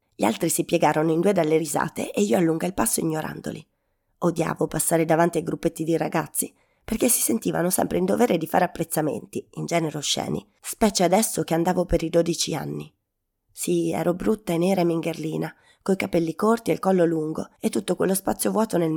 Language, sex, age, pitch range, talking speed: Italian, female, 30-49, 160-185 Hz, 195 wpm